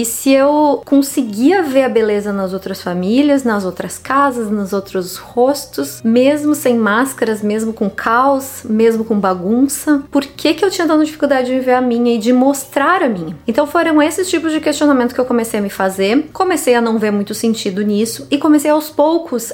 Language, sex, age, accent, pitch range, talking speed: Portuguese, female, 20-39, Brazilian, 210-265 Hz, 195 wpm